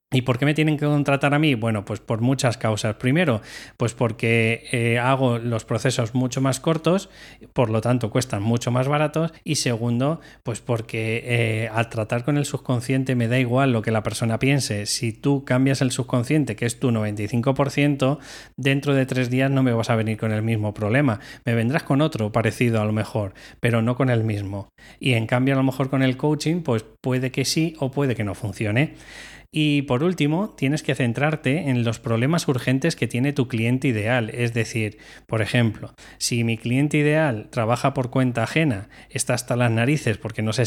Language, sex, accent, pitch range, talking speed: Spanish, male, Spanish, 115-140 Hz, 200 wpm